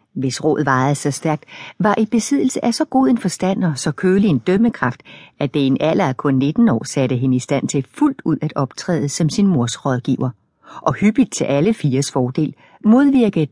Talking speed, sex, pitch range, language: 205 wpm, female, 135-215 Hz, Danish